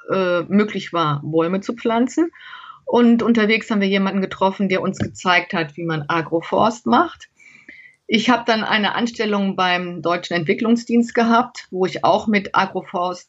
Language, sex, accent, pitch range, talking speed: German, female, German, 190-235 Hz, 150 wpm